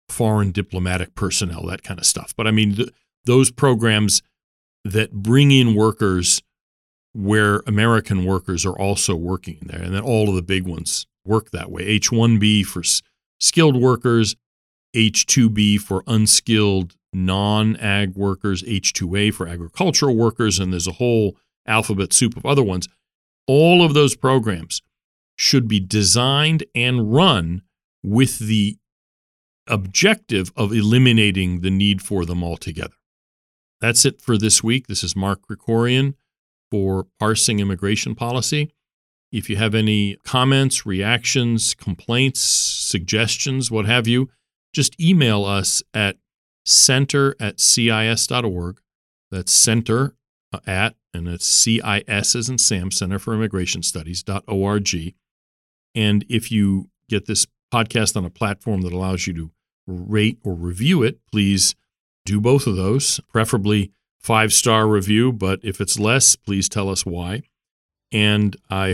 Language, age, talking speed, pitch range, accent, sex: English, 40-59, 135 wpm, 95-115 Hz, American, male